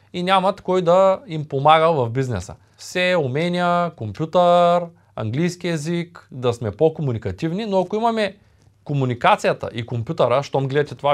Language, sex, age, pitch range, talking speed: Bulgarian, male, 20-39, 115-180 Hz, 135 wpm